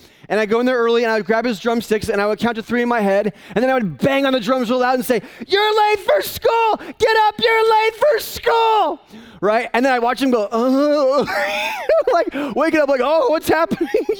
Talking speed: 245 wpm